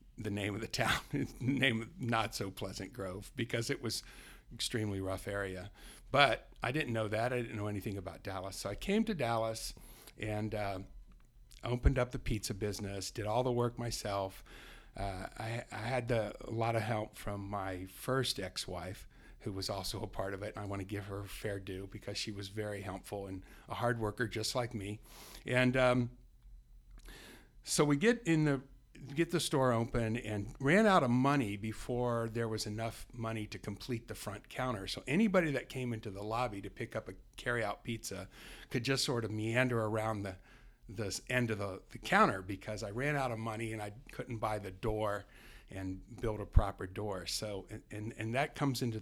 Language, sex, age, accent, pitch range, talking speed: English, male, 50-69, American, 100-125 Hz, 200 wpm